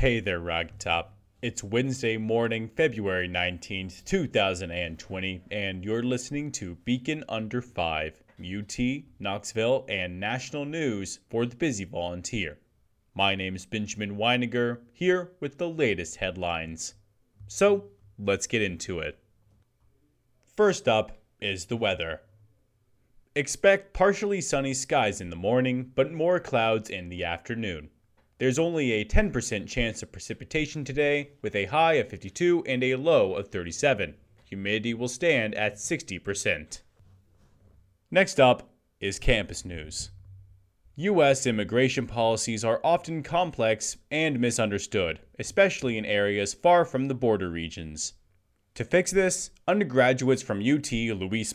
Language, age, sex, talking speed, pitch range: English, 30-49, male, 125 wpm, 100-140 Hz